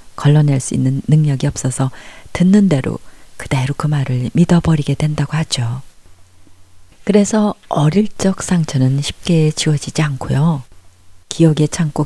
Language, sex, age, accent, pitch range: Korean, female, 40-59, native, 130-165 Hz